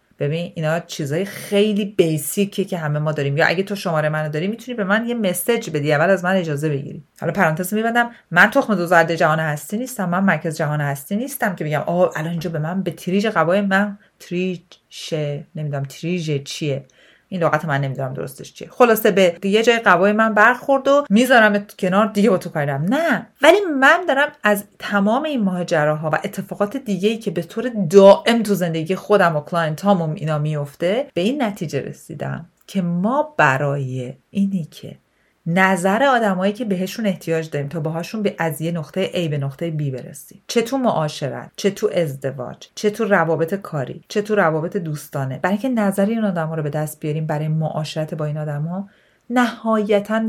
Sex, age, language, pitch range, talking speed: female, 30-49, Persian, 155-210 Hz, 175 wpm